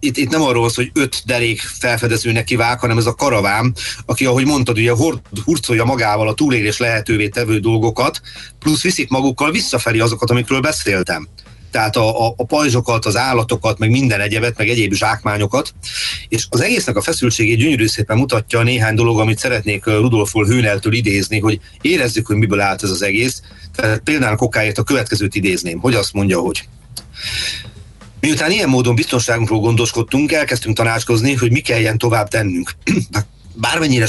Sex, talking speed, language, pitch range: male, 160 wpm, Hungarian, 105-125 Hz